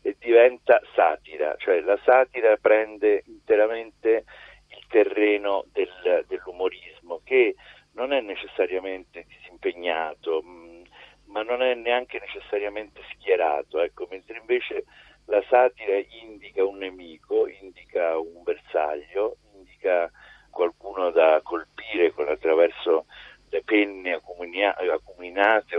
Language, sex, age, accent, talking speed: Italian, male, 50-69, native, 100 wpm